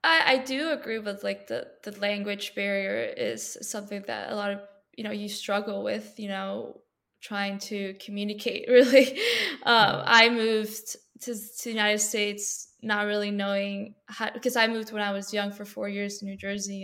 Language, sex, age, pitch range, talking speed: English, female, 10-29, 200-230 Hz, 180 wpm